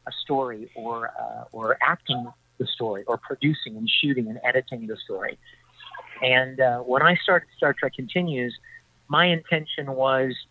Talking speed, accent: 155 wpm, American